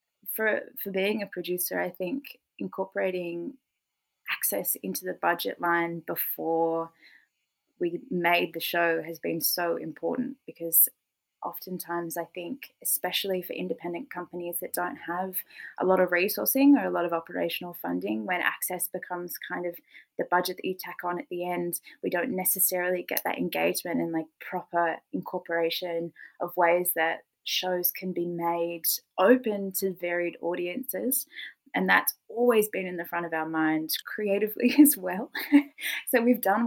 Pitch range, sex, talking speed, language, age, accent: 165-205 Hz, female, 155 wpm, English, 20-39, Australian